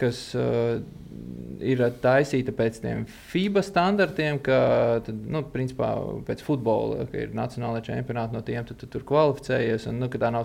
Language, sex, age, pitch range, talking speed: English, male, 20-39, 120-140 Hz, 170 wpm